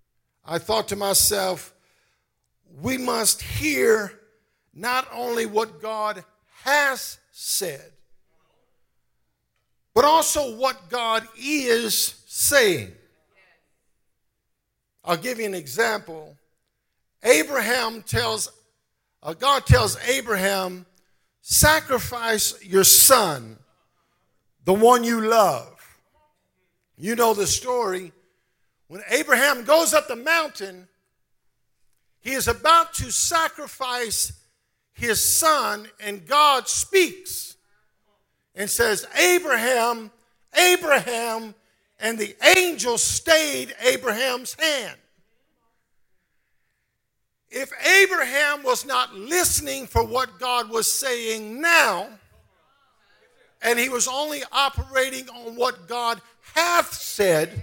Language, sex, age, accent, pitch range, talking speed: English, male, 50-69, American, 215-290 Hz, 90 wpm